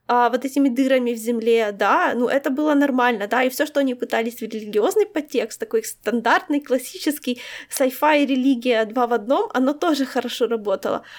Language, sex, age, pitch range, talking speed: Ukrainian, female, 20-39, 235-285 Hz, 170 wpm